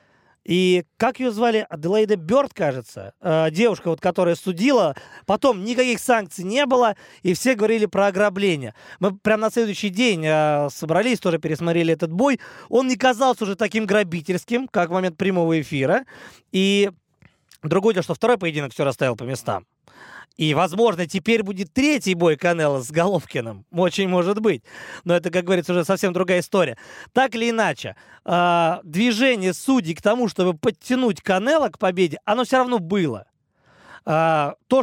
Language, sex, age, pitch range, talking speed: Russian, male, 20-39, 170-225 Hz, 150 wpm